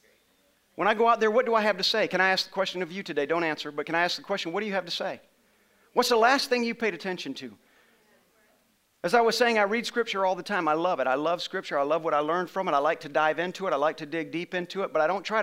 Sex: male